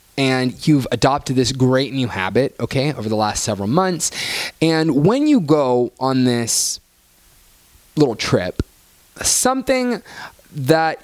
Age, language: 20-39, English